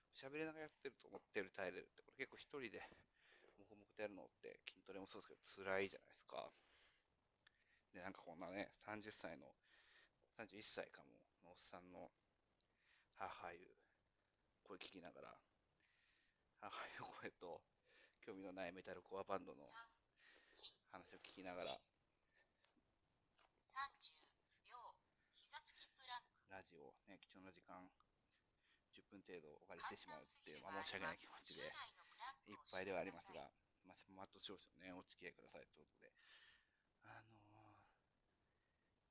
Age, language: 40-59, Japanese